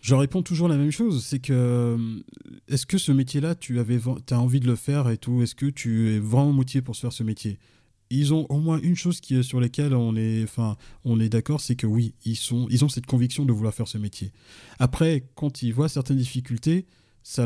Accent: French